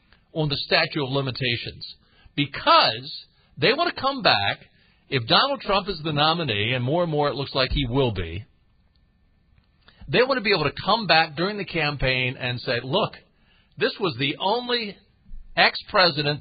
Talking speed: 170 wpm